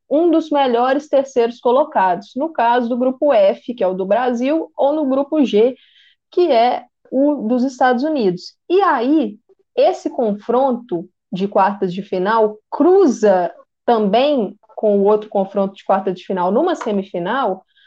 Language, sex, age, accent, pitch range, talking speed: Portuguese, female, 20-39, Brazilian, 205-290 Hz, 150 wpm